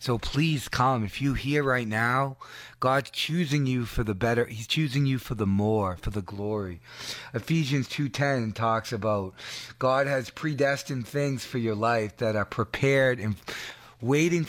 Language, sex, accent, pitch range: English, male, American, 115-140 Hz